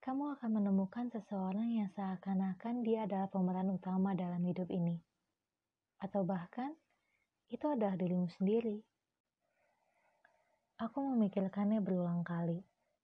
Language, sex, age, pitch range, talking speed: Indonesian, female, 20-39, 185-225 Hz, 105 wpm